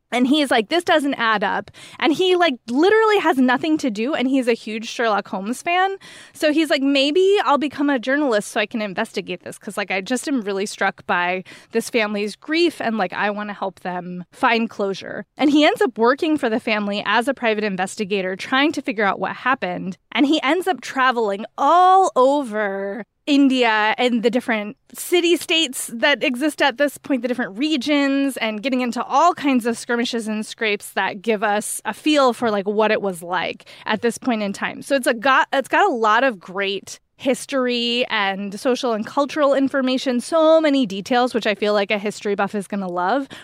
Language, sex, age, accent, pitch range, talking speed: English, female, 20-39, American, 210-280 Hz, 205 wpm